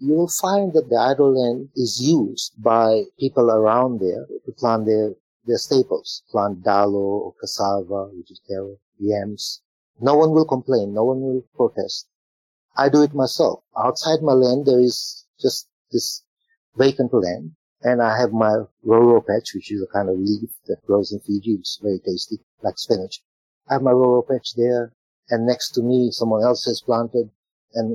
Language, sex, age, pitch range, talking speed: English, male, 50-69, 110-130 Hz, 180 wpm